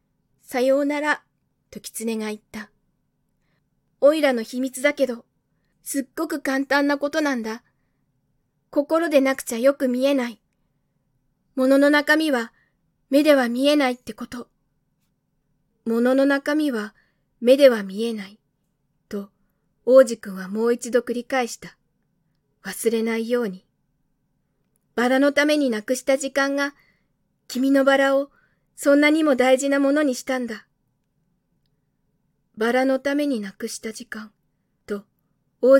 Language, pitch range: Japanese, 215-280 Hz